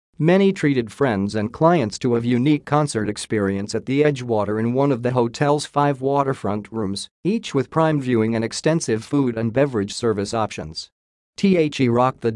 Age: 50-69